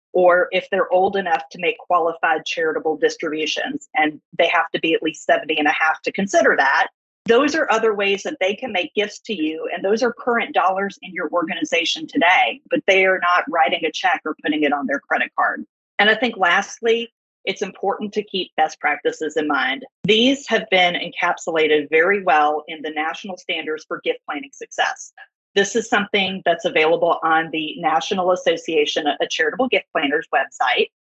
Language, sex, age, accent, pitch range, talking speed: English, female, 40-59, American, 165-230 Hz, 190 wpm